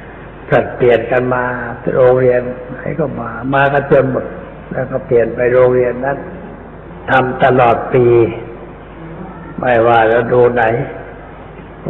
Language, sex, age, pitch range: Thai, male, 60-79, 115-140 Hz